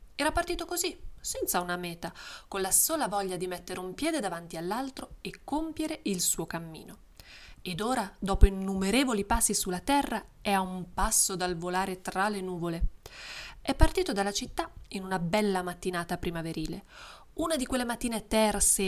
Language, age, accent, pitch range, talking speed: Italian, 20-39, native, 185-230 Hz, 160 wpm